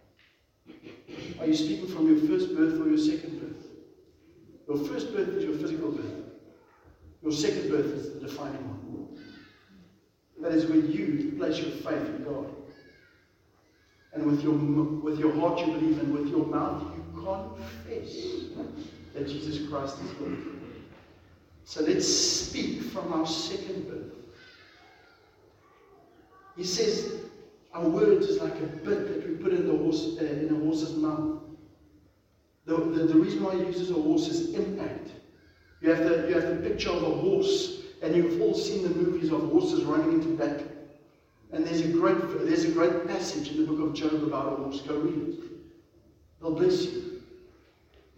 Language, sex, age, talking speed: English, male, 60-79, 170 wpm